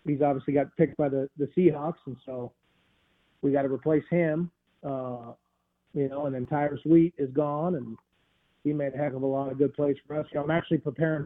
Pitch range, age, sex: 140-160 Hz, 40-59, male